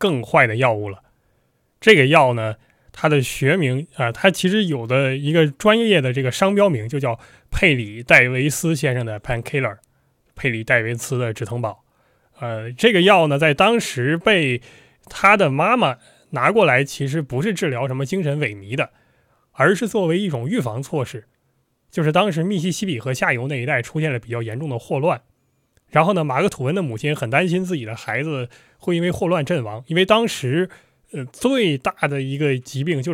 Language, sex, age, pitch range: Chinese, male, 20-39, 125-165 Hz